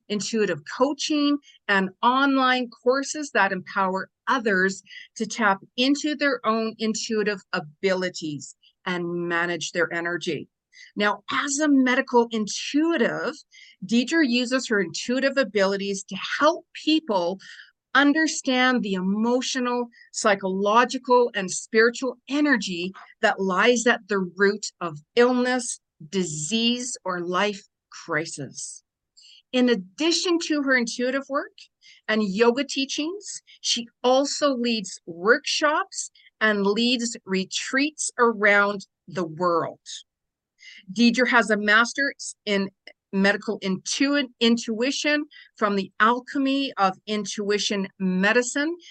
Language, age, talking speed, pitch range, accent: English, 50-69, 100 wpm, 195-270 Hz, American